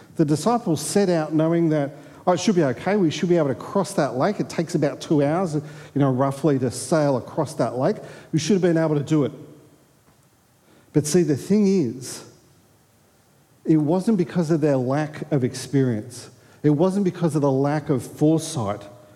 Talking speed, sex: 190 wpm, male